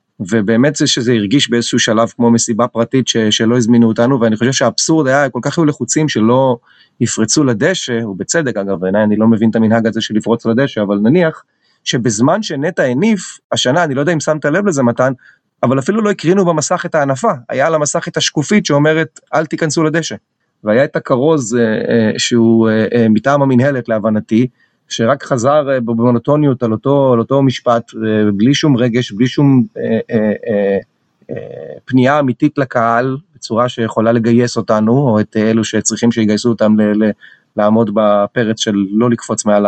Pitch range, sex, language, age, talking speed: 110-145 Hz, male, Hebrew, 30-49, 175 wpm